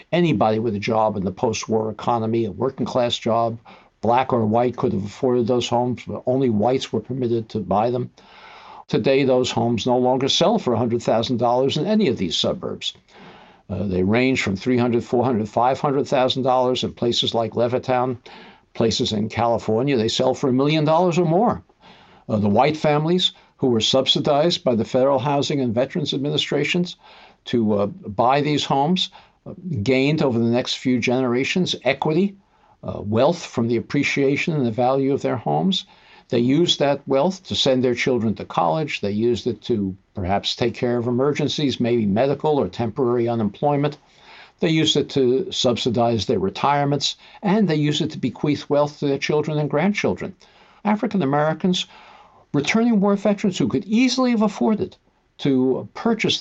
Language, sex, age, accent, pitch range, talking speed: English, male, 60-79, American, 120-150 Hz, 165 wpm